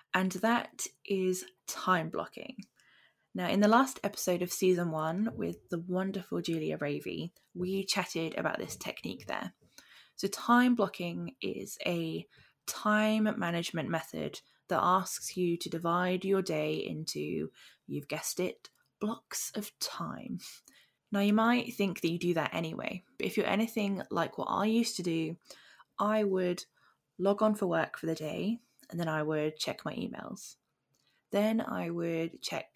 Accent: British